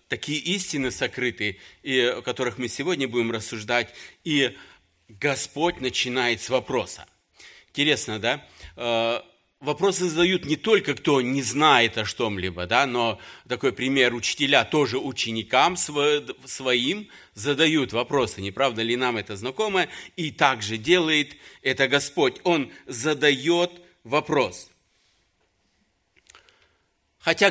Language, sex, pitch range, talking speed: Russian, male, 115-150 Hz, 105 wpm